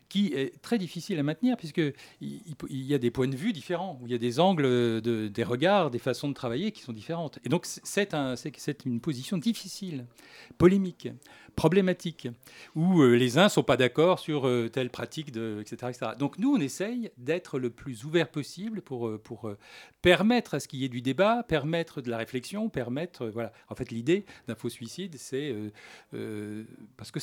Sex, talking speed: male, 205 wpm